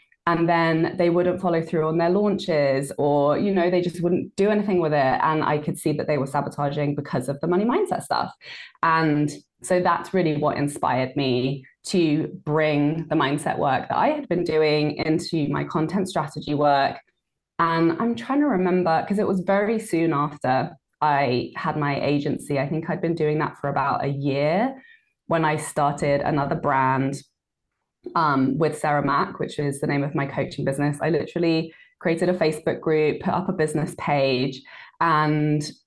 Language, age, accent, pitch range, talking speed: English, 20-39, British, 145-175 Hz, 180 wpm